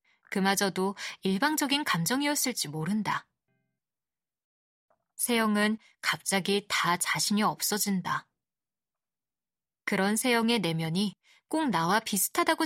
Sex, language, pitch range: female, Korean, 185-245 Hz